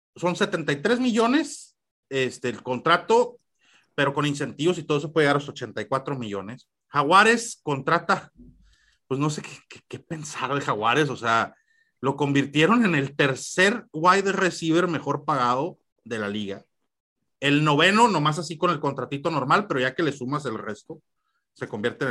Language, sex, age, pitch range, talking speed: Spanish, male, 30-49, 130-185 Hz, 165 wpm